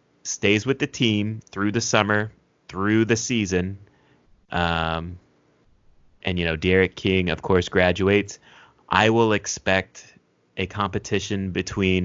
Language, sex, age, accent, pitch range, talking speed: English, male, 30-49, American, 95-110 Hz, 125 wpm